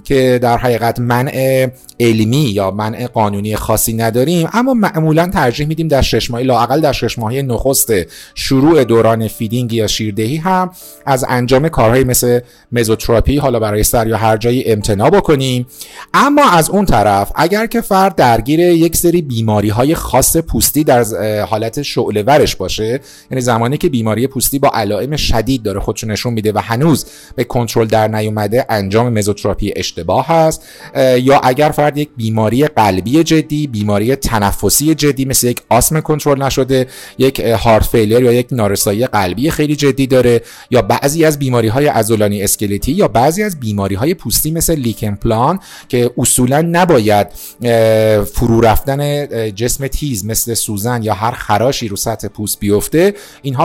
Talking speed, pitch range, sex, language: 155 wpm, 110-145 Hz, male, Persian